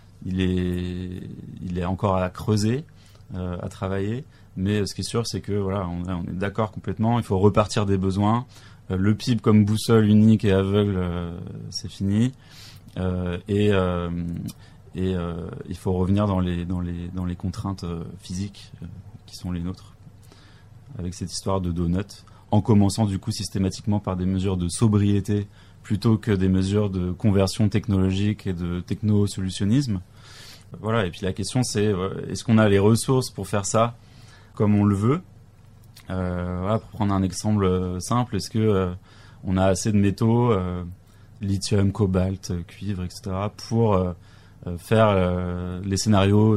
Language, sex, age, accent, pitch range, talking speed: French, male, 30-49, French, 95-110 Hz, 165 wpm